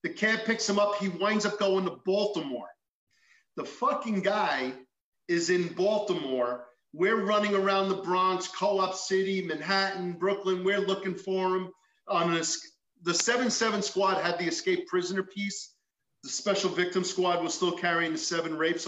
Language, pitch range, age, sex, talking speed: English, 160-200 Hz, 40-59, male, 155 wpm